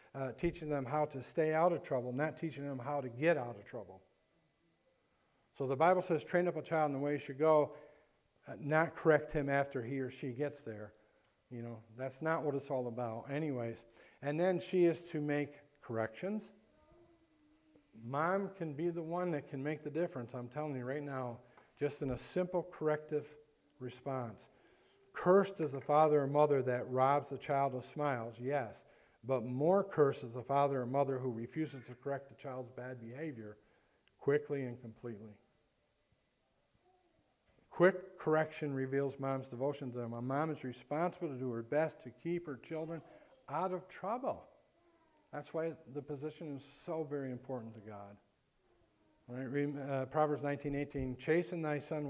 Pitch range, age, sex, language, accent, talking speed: 125-155 Hz, 50-69, male, English, American, 170 wpm